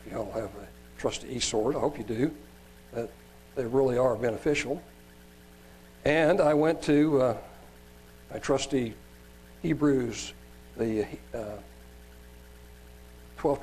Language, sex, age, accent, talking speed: English, male, 60-79, American, 110 wpm